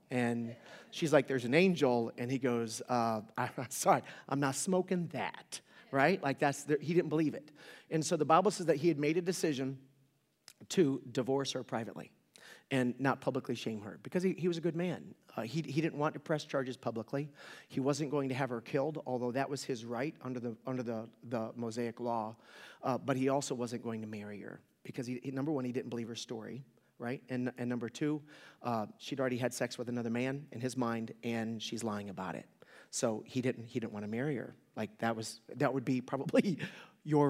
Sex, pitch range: male, 120-150 Hz